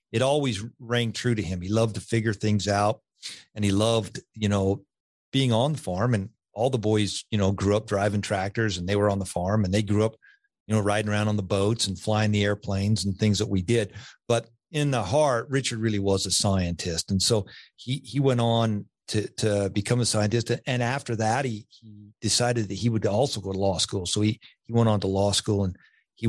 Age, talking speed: 50-69, 230 wpm